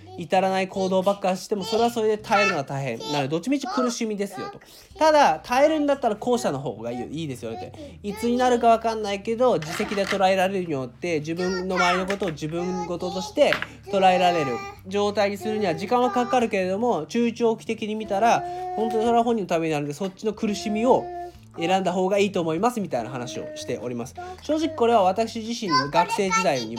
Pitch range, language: 150-225 Hz, Japanese